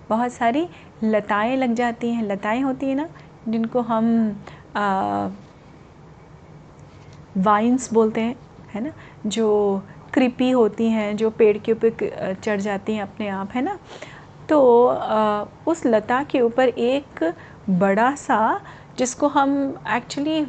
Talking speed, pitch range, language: 130 wpm, 215-290 Hz, Hindi